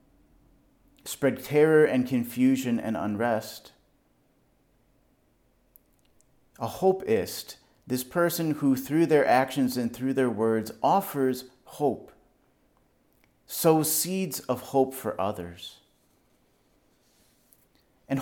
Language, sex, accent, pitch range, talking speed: English, male, American, 105-130 Hz, 90 wpm